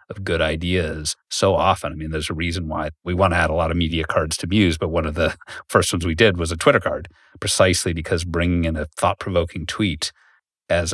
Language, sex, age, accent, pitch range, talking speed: English, male, 40-59, American, 80-90 Hz, 230 wpm